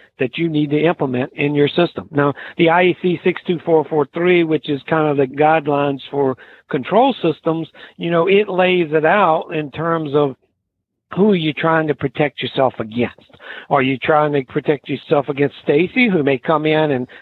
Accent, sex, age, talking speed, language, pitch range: American, male, 60-79, 180 wpm, English, 140-170 Hz